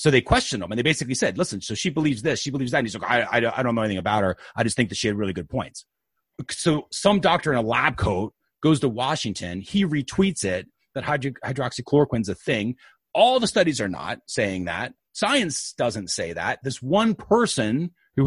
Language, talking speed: English, 225 wpm